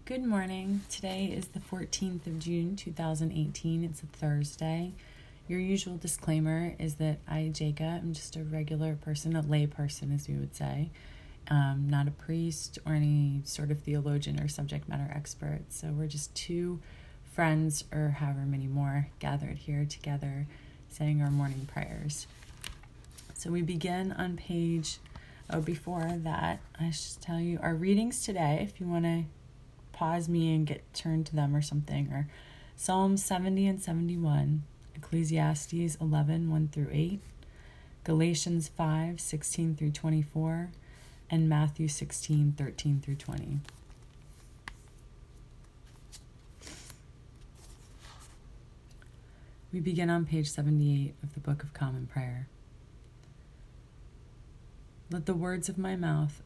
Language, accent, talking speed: English, American, 135 wpm